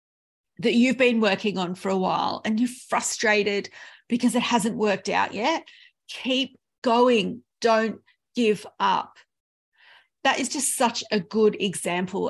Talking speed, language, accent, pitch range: 140 wpm, English, Australian, 195-250 Hz